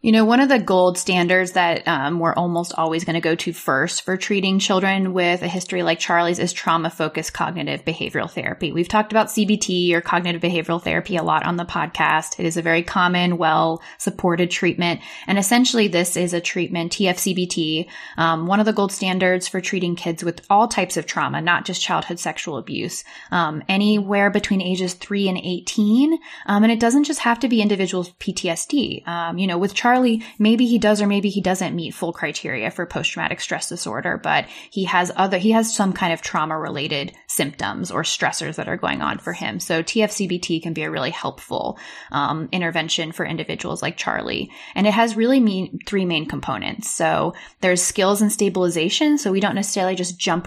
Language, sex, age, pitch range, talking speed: English, female, 10-29, 170-205 Hz, 195 wpm